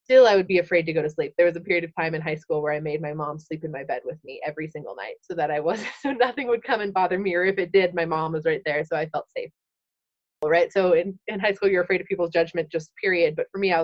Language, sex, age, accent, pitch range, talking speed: English, female, 20-39, American, 170-220 Hz, 320 wpm